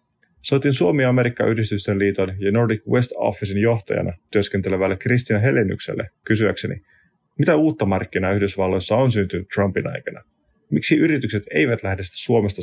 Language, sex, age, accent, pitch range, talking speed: Finnish, male, 30-49, native, 100-125 Hz, 120 wpm